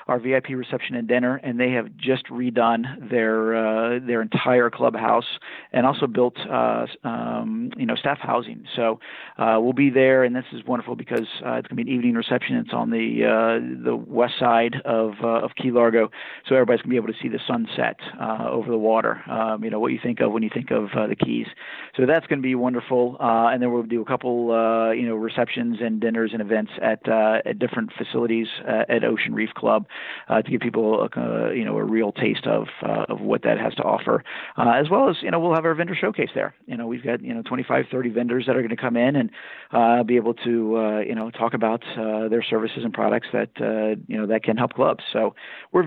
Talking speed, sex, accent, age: 240 wpm, male, American, 40-59